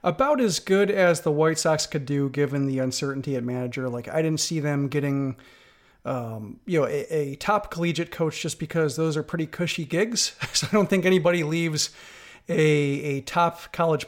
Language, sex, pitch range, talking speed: English, male, 140-170 Hz, 190 wpm